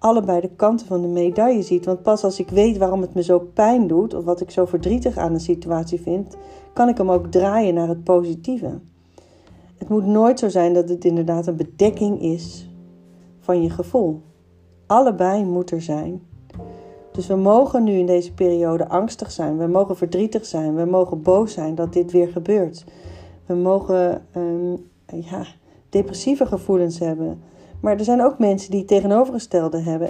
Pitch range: 170-205 Hz